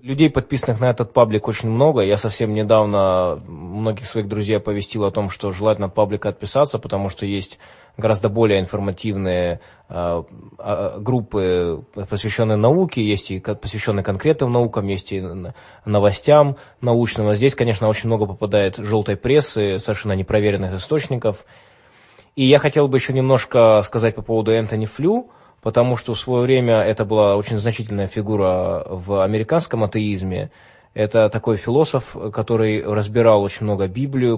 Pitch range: 100-120 Hz